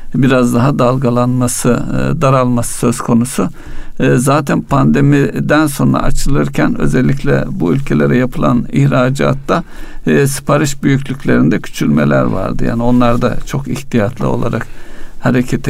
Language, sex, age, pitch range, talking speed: Turkish, male, 60-79, 115-140 Hz, 100 wpm